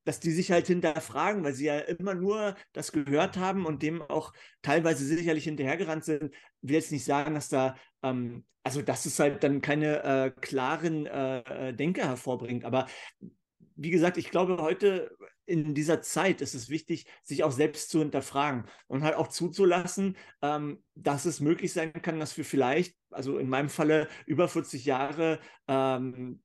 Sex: male